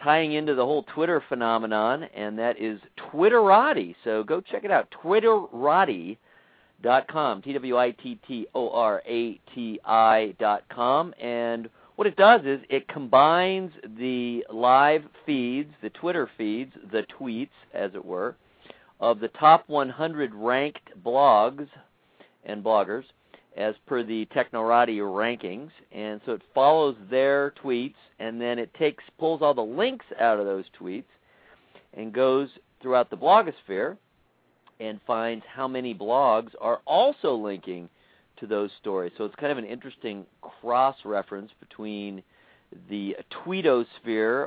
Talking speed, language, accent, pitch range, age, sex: 125 wpm, English, American, 110-145 Hz, 50-69, male